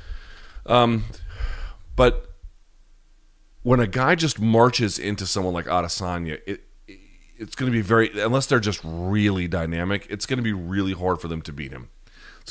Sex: male